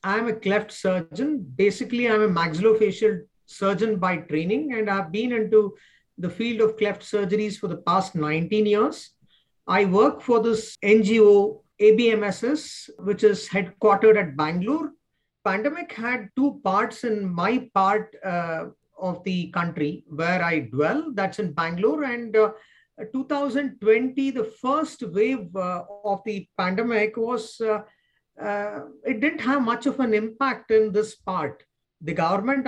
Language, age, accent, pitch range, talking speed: English, 50-69, Indian, 190-230 Hz, 145 wpm